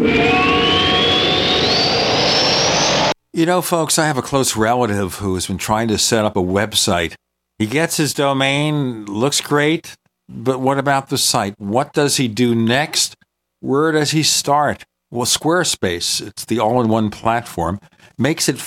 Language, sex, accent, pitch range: English, male, American, 110-165 Hz